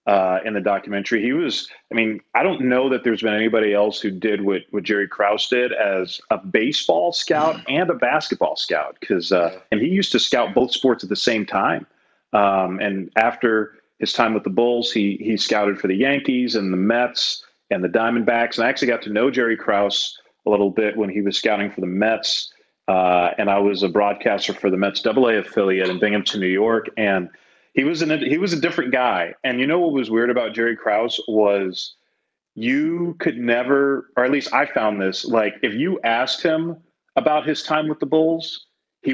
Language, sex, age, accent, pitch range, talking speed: English, male, 30-49, American, 100-130 Hz, 210 wpm